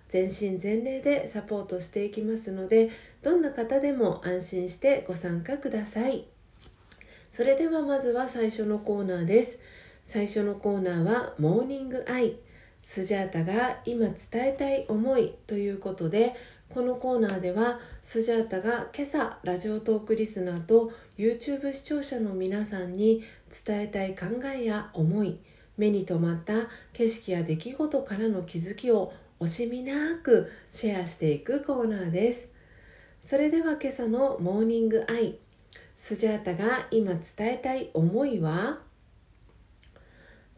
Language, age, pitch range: Japanese, 40-59, 185-245 Hz